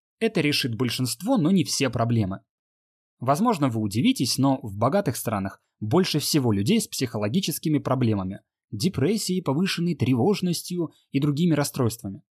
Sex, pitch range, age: male, 110-170 Hz, 20-39